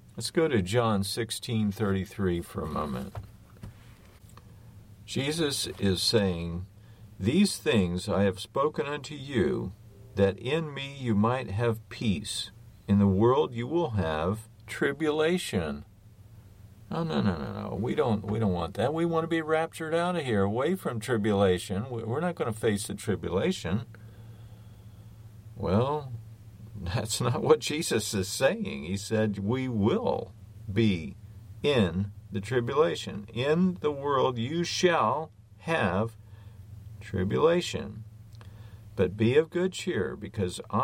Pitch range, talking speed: 100-115 Hz, 130 wpm